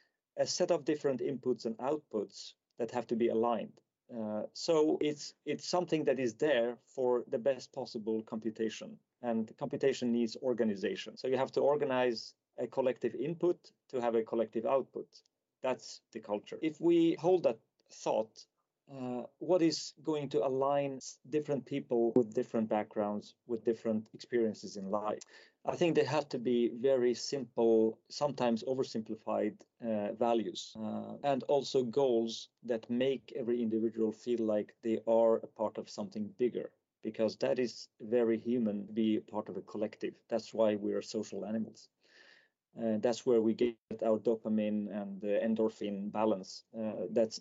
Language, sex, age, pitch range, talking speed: English, male, 40-59, 110-135 Hz, 160 wpm